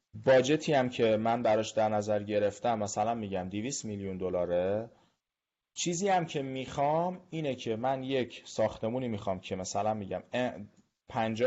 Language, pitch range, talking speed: Persian, 100-130 Hz, 145 wpm